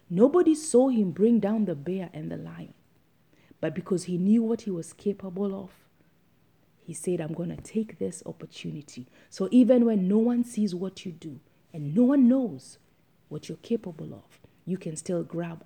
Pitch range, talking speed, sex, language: 160-205 Hz, 185 wpm, female, English